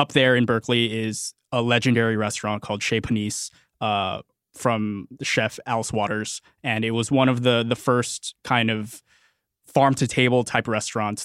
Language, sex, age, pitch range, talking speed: English, male, 20-39, 115-145 Hz, 160 wpm